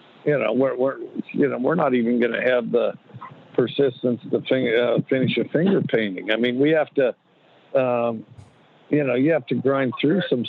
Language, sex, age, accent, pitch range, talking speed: English, male, 60-79, American, 110-130 Hz, 200 wpm